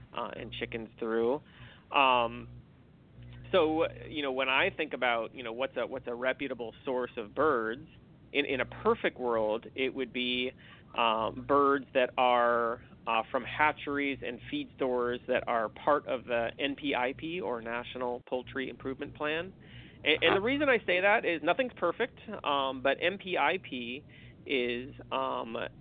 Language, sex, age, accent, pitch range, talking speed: English, male, 40-59, American, 120-145 Hz, 155 wpm